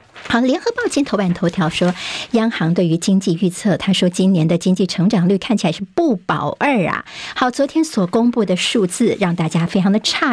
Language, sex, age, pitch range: Chinese, male, 50-69, 180-235 Hz